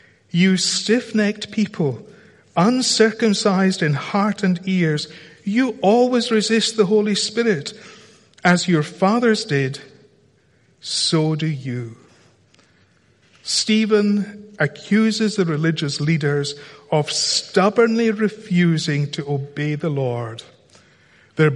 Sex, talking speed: male, 95 wpm